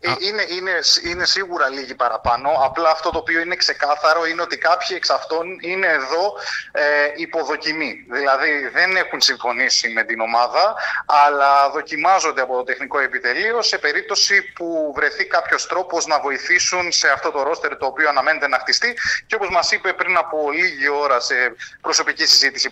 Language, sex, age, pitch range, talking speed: Greek, male, 30-49, 145-195 Hz, 165 wpm